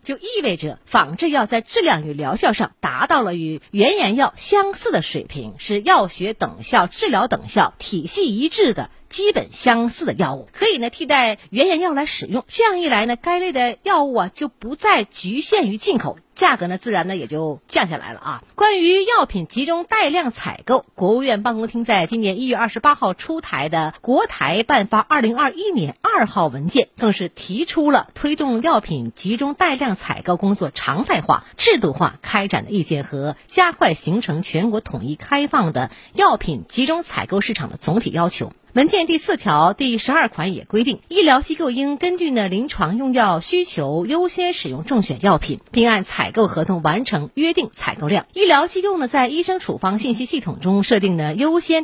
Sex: female